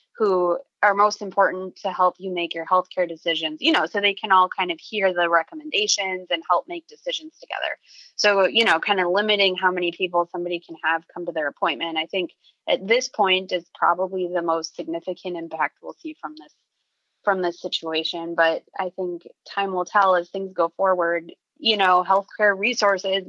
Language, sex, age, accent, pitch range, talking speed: English, female, 20-39, American, 175-205 Hz, 195 wpm